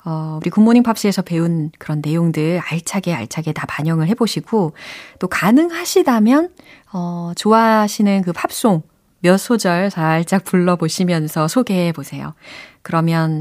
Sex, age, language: female, 30-49, Korean